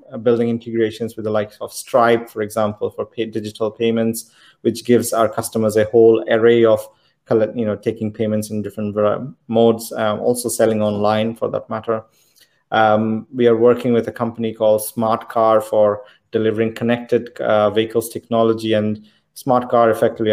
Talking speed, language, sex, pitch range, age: 160 wpm, English, male, 105-115 Hz, 30-49